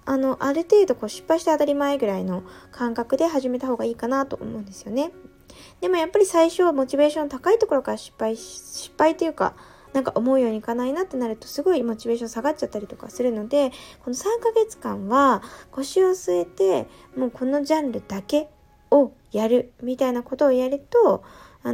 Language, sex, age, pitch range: Japanese, female, 20-39, 230-300 Hz